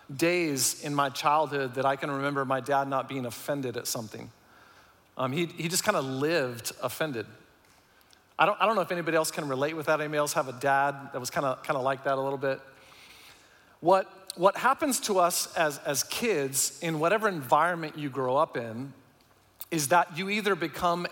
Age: 40-59